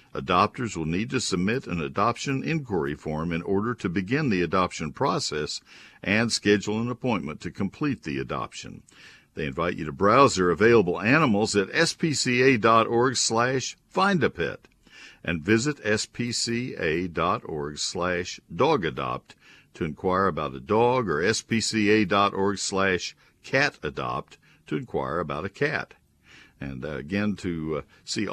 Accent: American